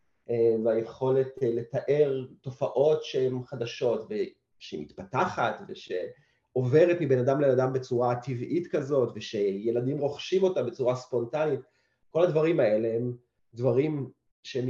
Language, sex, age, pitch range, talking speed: Hebrew, male, 30-49, 120-160 Hz, 105 wpm